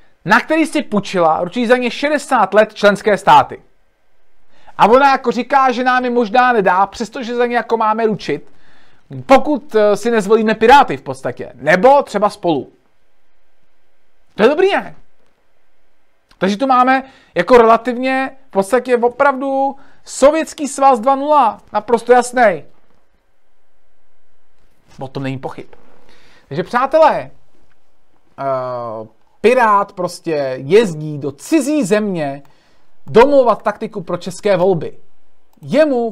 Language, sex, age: Czech, male, 40-59